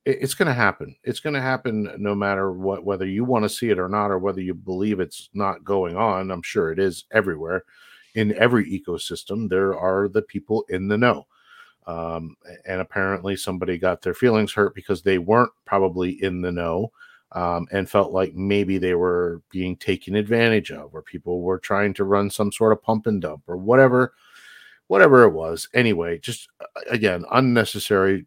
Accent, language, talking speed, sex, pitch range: American, English, 190 wpm, male, 90-105 Hz